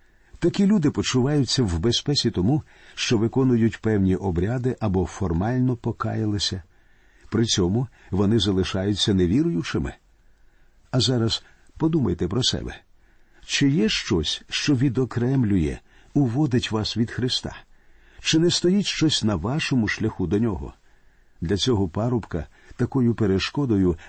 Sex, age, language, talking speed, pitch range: male, 50-69, Ukrainian, 115 wpm, 95-125 Hz